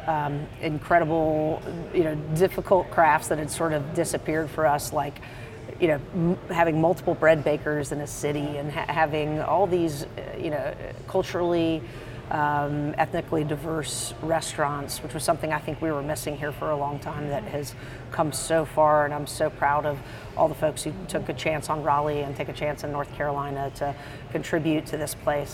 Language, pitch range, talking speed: English, 145-160 Hz, 185 wpm